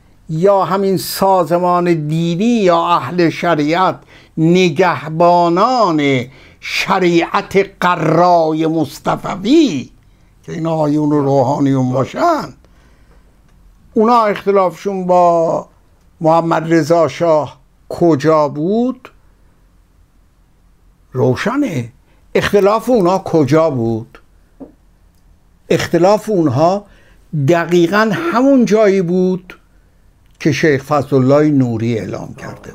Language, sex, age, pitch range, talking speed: Persian, male, 60-79, 145-195 Hz, 75 wpm